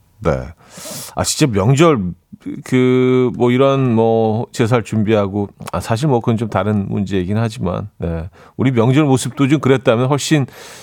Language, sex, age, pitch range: Korean, male, 40-59, 100-135 Hz